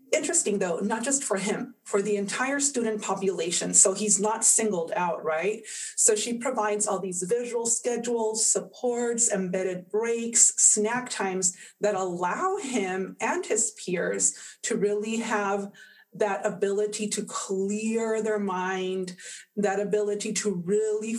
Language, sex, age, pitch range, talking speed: English, female, 30-49, 195-230 Hz, 135 wpm